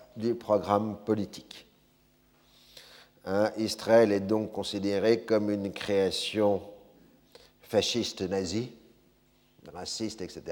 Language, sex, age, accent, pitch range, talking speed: French, male, 50-69, French, 95-120 Hz, 80 wpm